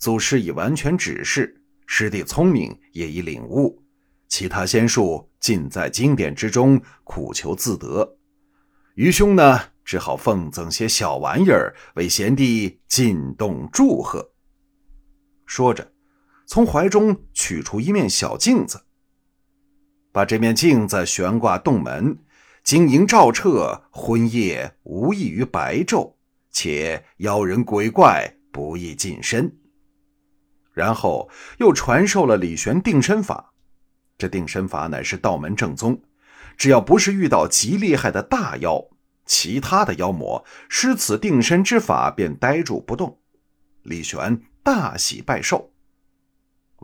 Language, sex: Chinese, male